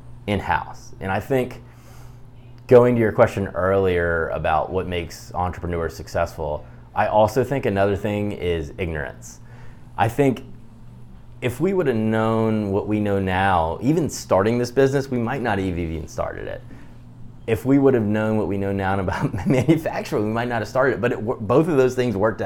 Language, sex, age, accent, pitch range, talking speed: English, male, 20-39, American, 95-120 Hz, 175 wpm